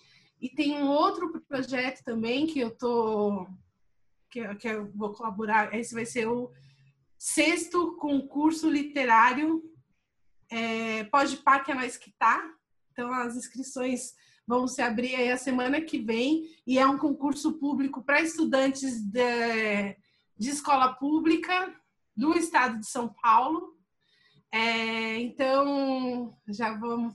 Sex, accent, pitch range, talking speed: female, Brazilian, 230-275 Hz, 130 wpm